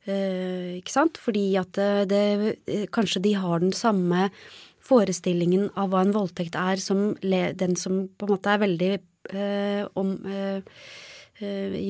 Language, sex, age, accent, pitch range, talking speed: English, female, 20-39, Swedish, 185-230 Hz, 155 wpm